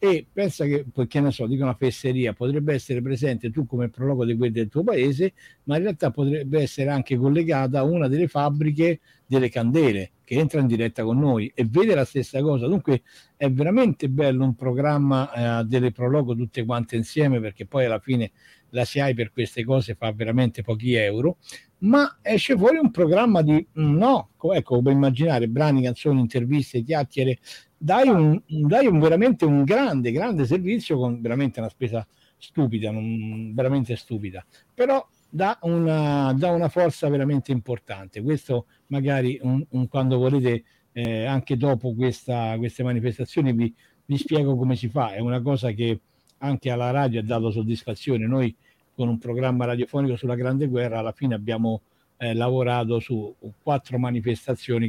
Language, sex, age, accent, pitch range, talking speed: Italian, male, 60-79, native, 120-145 Hz, 165 wpm